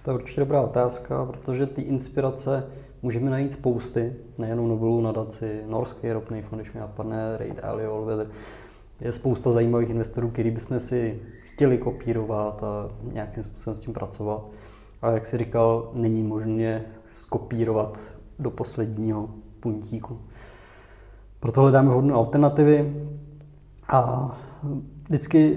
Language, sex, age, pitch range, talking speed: Czech, male, 20-39, 115-130 Hz, 125 wpm